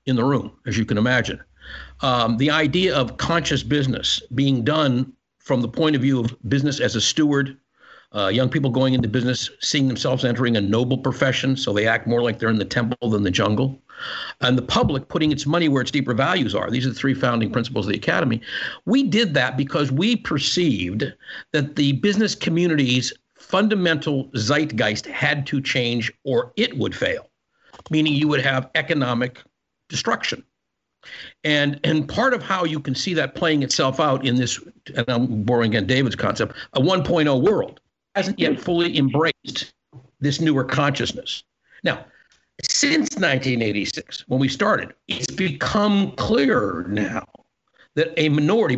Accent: American